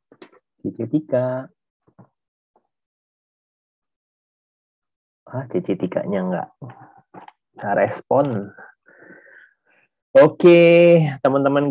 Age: 30-49